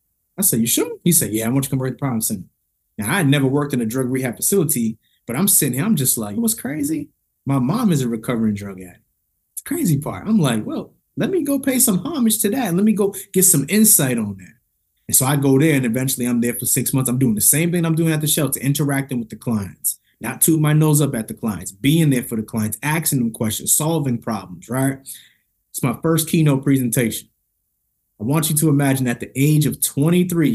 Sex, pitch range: male, 120-155 Hz